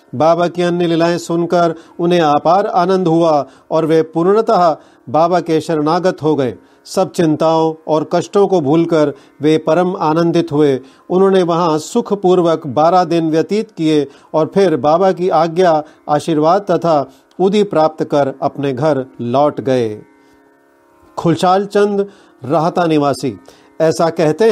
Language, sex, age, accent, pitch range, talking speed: Hindi, male, 40-59, native, 155-185 Hz, 130 wpm